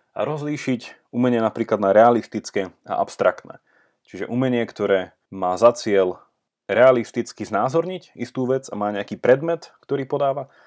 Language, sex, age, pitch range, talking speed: Slovak, male, 30-49, 100-140 Hz, 135 wpm